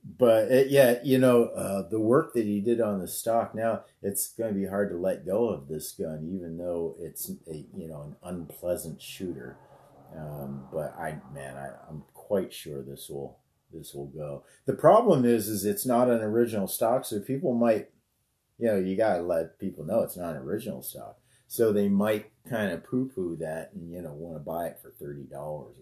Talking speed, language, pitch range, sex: 210 wpm, English, 75-110 Hz, male